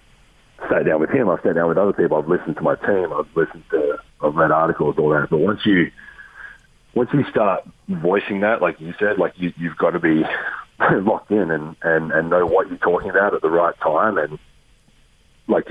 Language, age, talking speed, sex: English, 30-49, 215 wpm, male